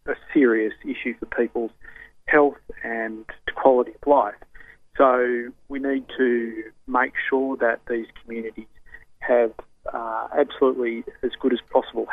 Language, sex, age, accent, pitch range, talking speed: English, male, 40-59, Australian, 115-140 Hz, 130 wpm